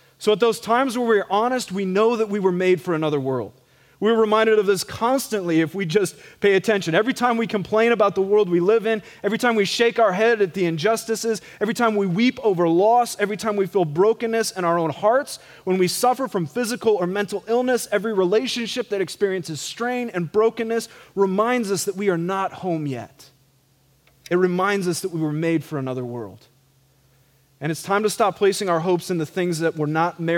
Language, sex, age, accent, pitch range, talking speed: English, male, 30-49, American, 165-215 Hz, 210 wpm